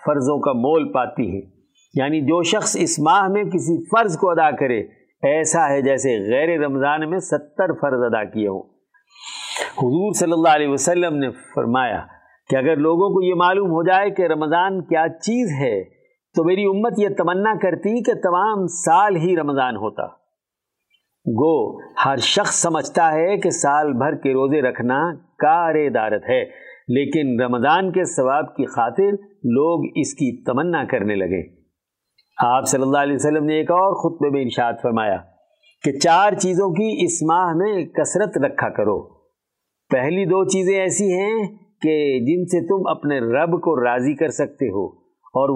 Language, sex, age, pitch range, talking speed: Urdu, male, 50-69, 140-195 Hz, 160 wpm